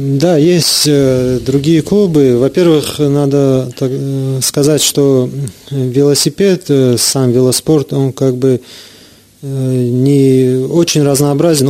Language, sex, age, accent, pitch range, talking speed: Russian, male, 30-49, native, 125-145 Hz, 115 wpm